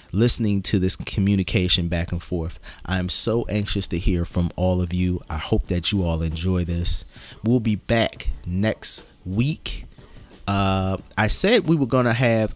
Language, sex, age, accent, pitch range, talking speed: English, male, 30-49, American, 90-110 Hz, 170 wpm